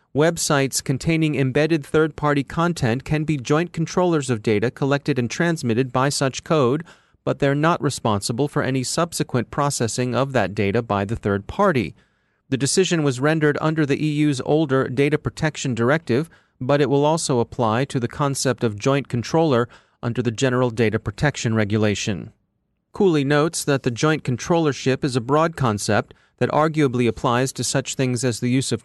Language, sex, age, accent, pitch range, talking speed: English, male, 30-49, American, 120-150 Hz, 165 wpm